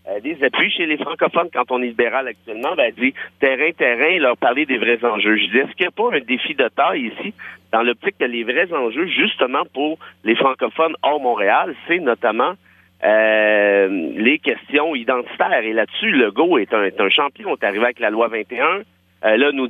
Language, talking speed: French, 210 wpm